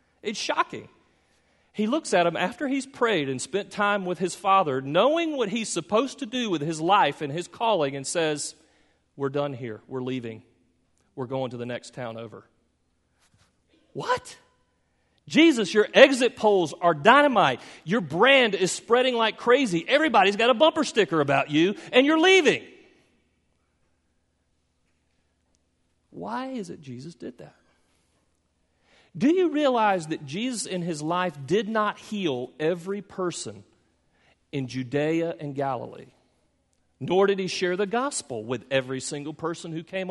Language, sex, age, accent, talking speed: English, male, 40-59, American, 150 wpm